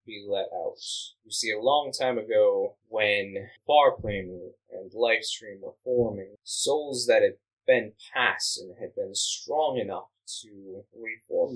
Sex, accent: male, American